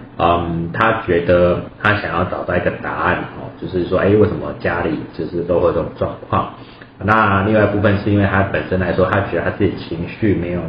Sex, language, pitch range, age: male, Chinese, 90-105 Hz, 30-49